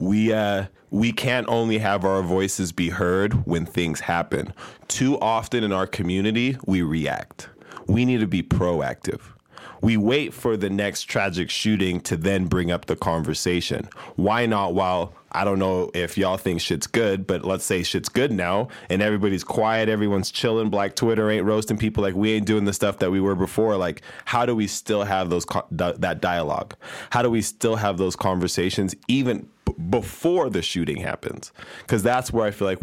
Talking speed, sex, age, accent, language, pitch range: 185 wpm, male, 20-39, American, English, 90-110 Hz